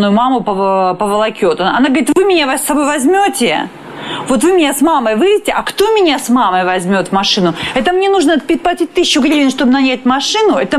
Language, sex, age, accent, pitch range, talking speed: Russian, female, 30-49, native, 235-335 Hz, 185 wpm